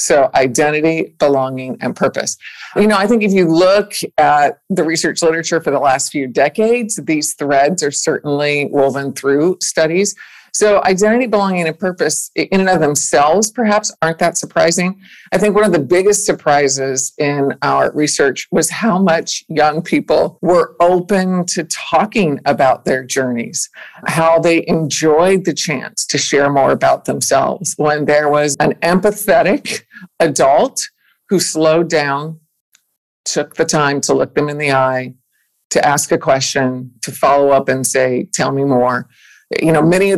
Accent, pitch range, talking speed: American, 145-185 Hz, 160 wpm